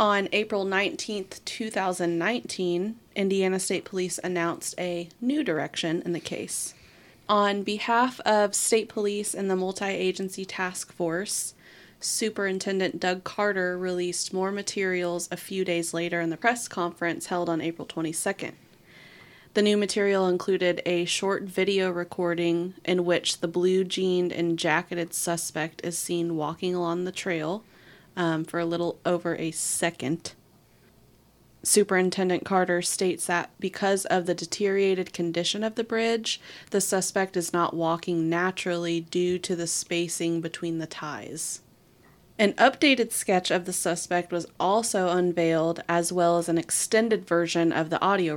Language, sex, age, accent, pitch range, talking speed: English, female, 20-39, American, 170-195 Hz, 140 wpm